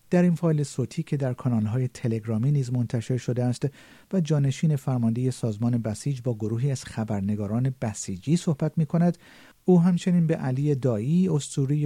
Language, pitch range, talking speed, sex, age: Persian, 120-155 Hz, 155 wpm, male, 50-69